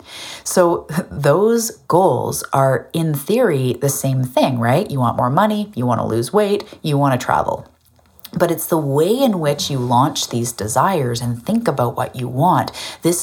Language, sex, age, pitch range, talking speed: English, female, 30-49, 125-165 Hz, 180 wpm